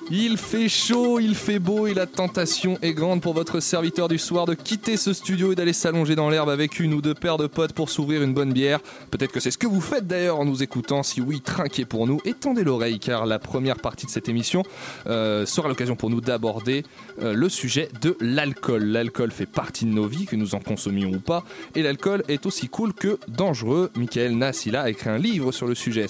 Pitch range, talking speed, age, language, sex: 120-175 Hz, 230 wpm, 20-39, French, male